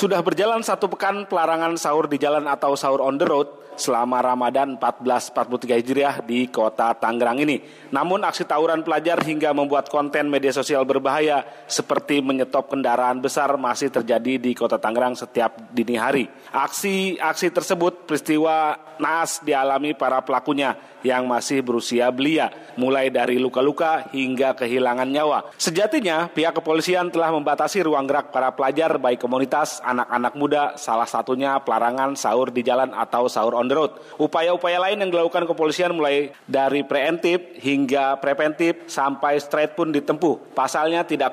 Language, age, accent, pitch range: Indonesian, 30-49, native, 125-155 Hz